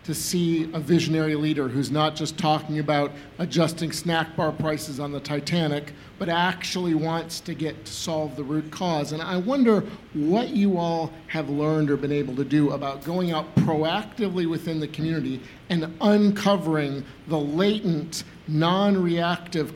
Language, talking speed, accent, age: English, 160 wpm, American, 50-69